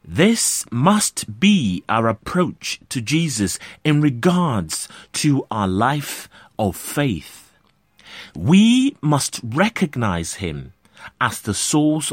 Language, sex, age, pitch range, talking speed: English, male, 30-49, 115-185 Hz, 105 wpm